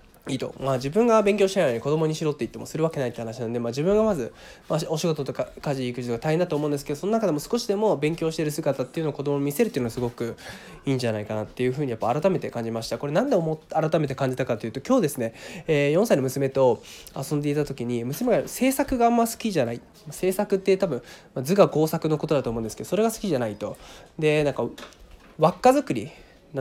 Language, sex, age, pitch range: Japanese, male, 20-39, 125-185 Hz